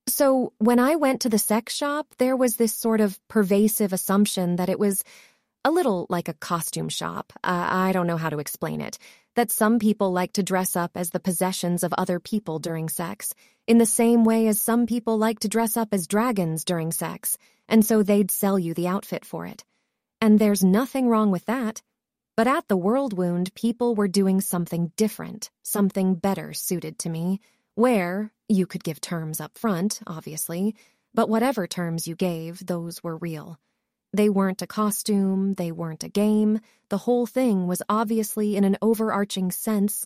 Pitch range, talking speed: 175-225 Hz, 185 wpm